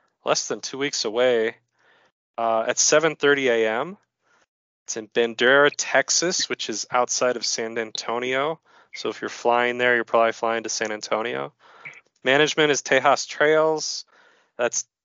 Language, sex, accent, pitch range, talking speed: English, male, American, 115-155 Hz, 140 wpm